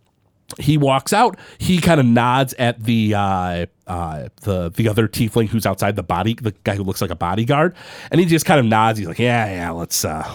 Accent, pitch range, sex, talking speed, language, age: American, 100-150 Hz, male, 220 wpm, English, 30-49